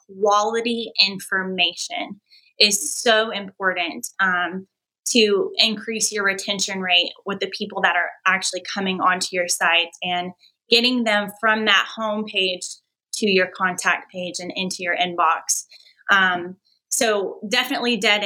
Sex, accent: female, American